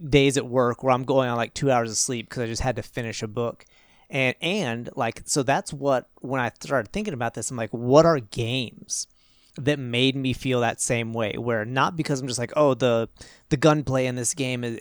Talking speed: 235 wpm